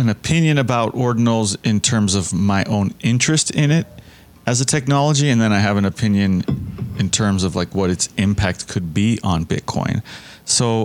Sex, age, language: male, 30-49, English